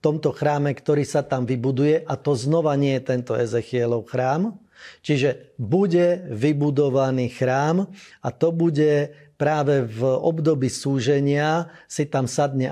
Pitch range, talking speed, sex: 130-160 Hz, 135 wpm, male